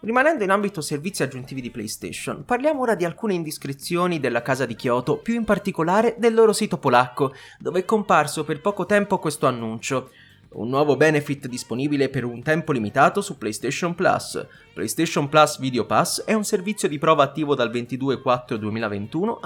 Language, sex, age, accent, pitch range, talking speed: Italian, male, 30-49, native, 130-195 Hz, 165 wpm